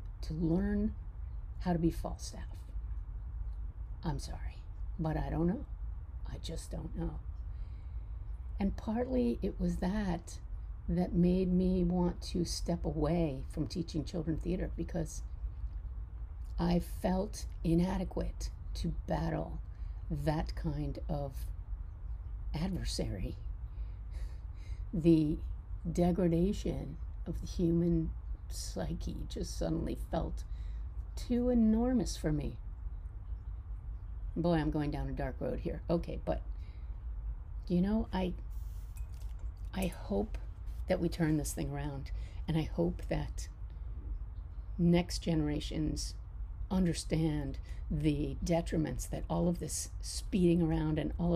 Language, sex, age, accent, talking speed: English, female, 50-69, American, 110 wpm